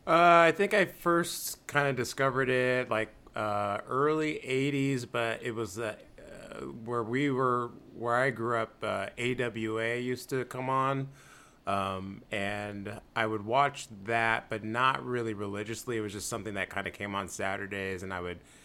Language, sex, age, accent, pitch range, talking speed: English, male, 30-49, American, 100-125 Hz, 170 wpm